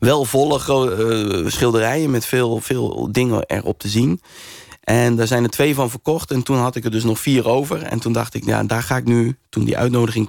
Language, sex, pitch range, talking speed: Dutch, male, 110-135 Hz, 220 wpm